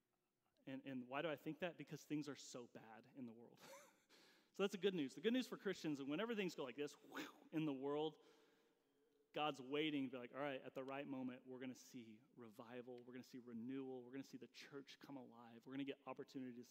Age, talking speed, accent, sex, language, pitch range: 30-49, 245 wpm, American, male, English, 130-175 Hz